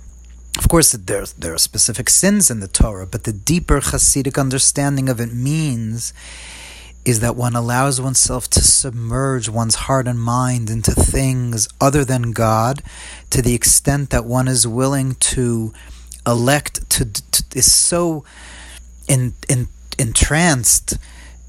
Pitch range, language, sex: 115-155 Hz, English, male